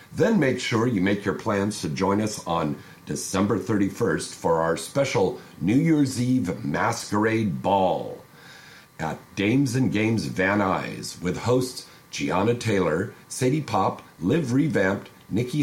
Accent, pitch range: American, 95-130 Hz